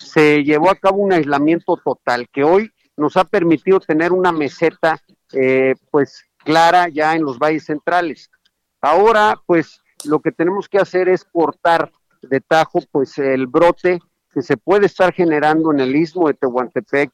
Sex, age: male, 50-69